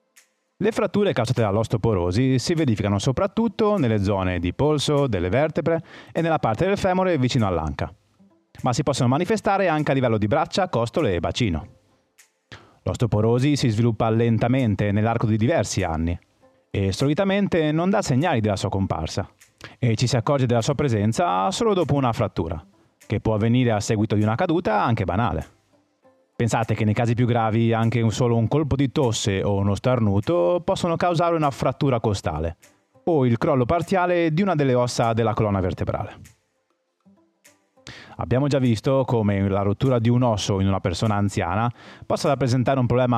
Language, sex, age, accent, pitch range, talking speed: Italian, male, 30-49, native, 105-140 Hz, 165 wpm